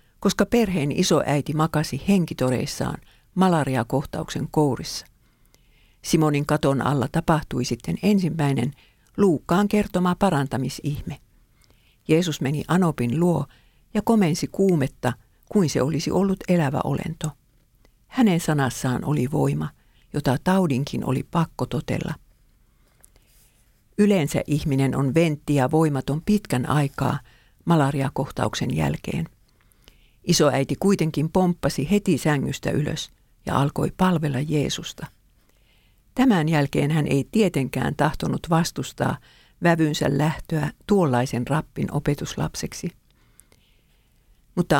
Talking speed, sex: 95 wpm, female